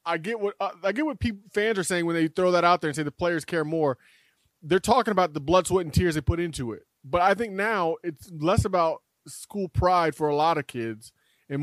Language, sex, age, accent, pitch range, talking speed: English, male, 30-49, American, 150-190 Hz, 260 wpm